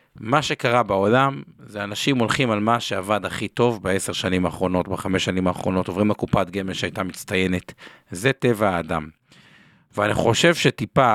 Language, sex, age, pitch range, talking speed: Hebrew, male, 50-69, 105-145 Hz, 150 wpm